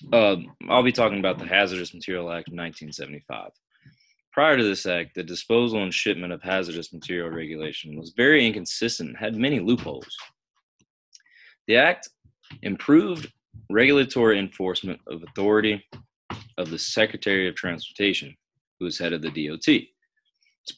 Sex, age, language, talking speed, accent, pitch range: male, 20-39, English, 140 wpm, American, 85-115 Hz